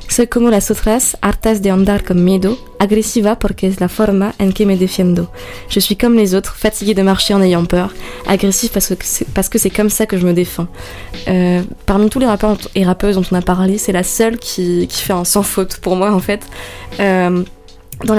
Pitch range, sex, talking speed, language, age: 185-215 Hz, female, 200 wpm, French, 20-39